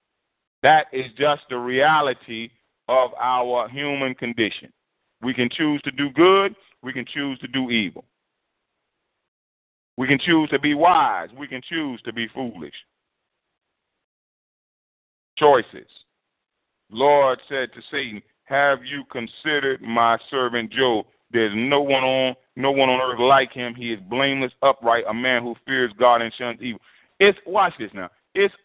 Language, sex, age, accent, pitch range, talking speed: English, male, 40-59, American, 120-145 Hz, 150 wpm